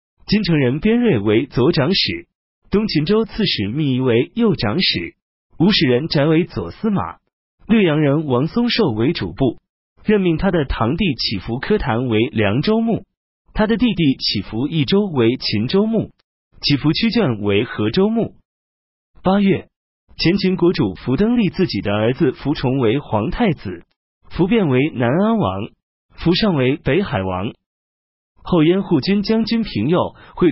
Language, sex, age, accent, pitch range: Chinese, male, 30-49, native, 115-195 Hz